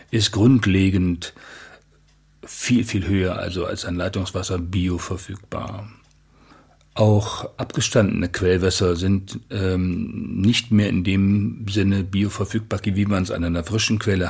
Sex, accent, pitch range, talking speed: male, German, 90-110 Hz, 120 wpm